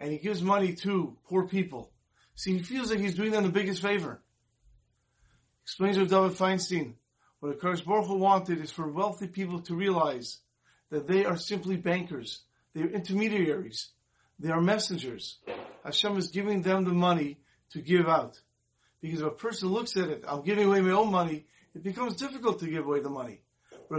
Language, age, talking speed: English, 40-59, 185 wpm